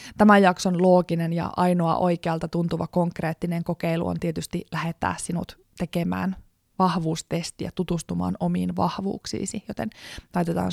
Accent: native